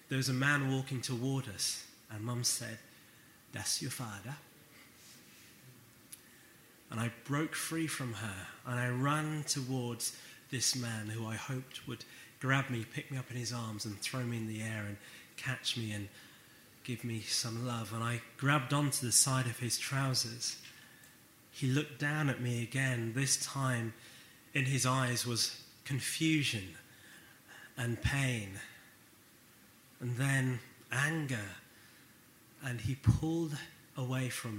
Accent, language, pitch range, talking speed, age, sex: British, English, 115-145 Hz, 145 wpm, 30-49, male